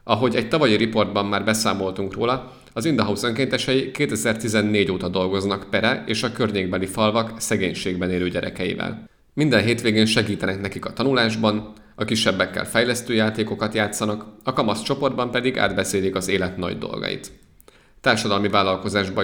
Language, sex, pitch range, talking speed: Hungarian, male, 95-120 Hz, 135 wpm